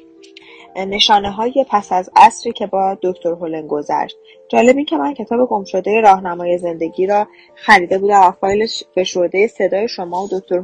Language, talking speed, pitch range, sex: Persian, 165 wpm, 180-230 Hz, female